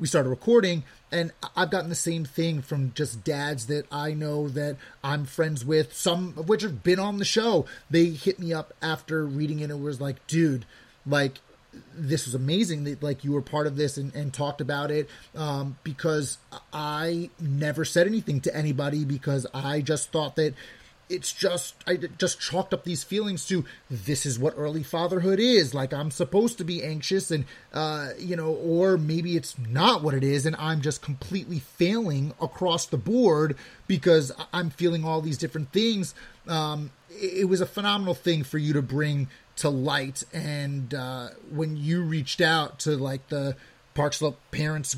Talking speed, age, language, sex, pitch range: 185 wpm, 30-49, English, male, 145-170 Hz